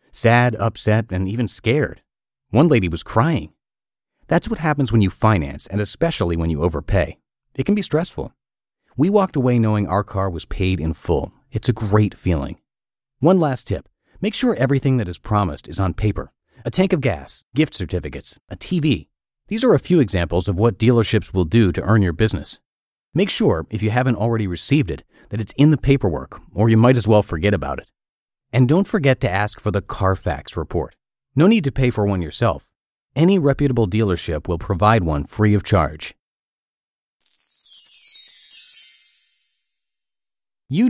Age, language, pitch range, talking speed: 30-49, English, 90-135 Hz, 175 wpm